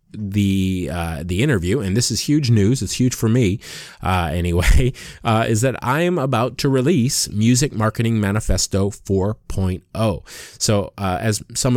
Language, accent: English, American